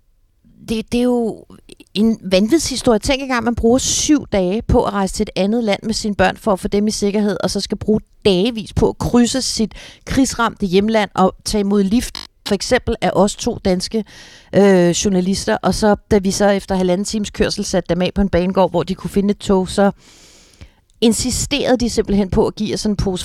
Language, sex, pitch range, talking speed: Danish, female, 170-210 Hz, 215 wpm